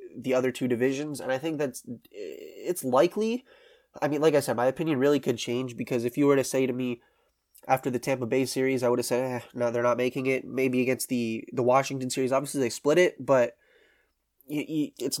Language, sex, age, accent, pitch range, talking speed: English, male, 20-39, American, 125-145 Hz, 215 wpm